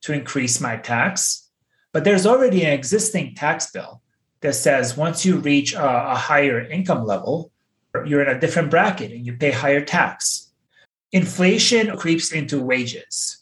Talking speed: 150 wpm